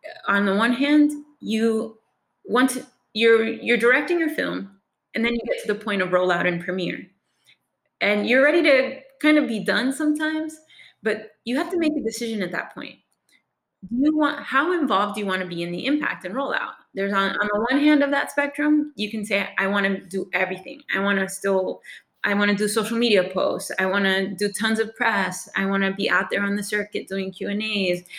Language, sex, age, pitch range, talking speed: English, female, 20-39, 190-250 Hz, 220 wpm